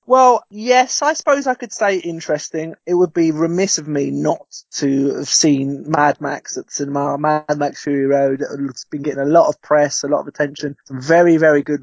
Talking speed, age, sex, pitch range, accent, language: 215 wpm, 20-39, male, 135-160 Hz, British, English